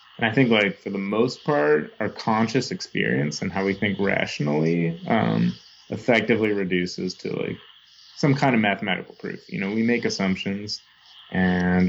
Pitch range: 90-105 Hz